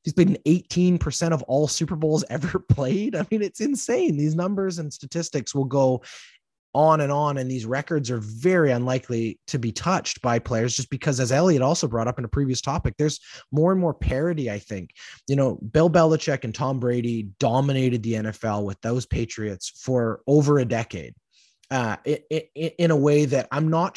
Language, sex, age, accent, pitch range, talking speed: English, male, 20-39, American, 120-155 Hz, 190 wpm